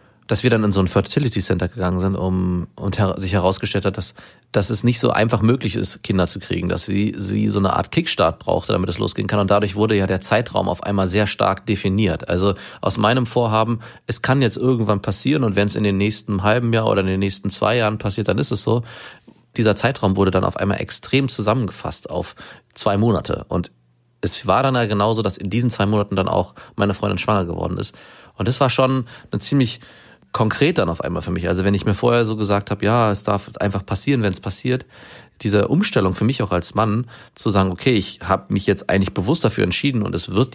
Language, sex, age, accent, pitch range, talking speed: German, male, 30-49, German, 95-115 Hz, 230 wpm